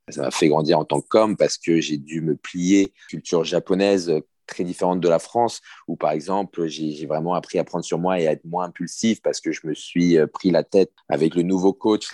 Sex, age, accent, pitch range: male, 30-49, French, 85-110 Hz